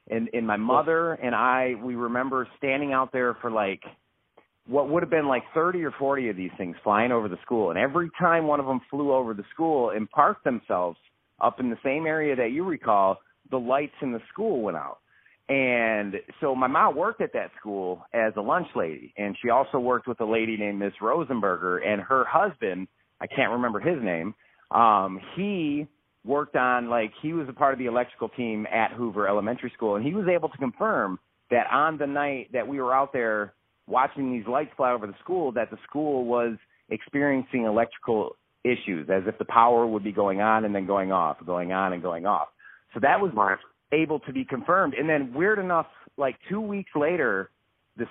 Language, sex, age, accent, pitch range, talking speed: English, male, 30-49, American, 110-145 Hz, 205 wpm